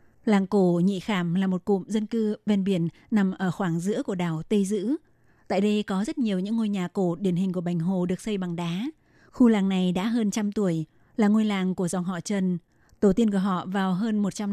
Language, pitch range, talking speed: Vietnamese, 185-220 Hz, 240 wpm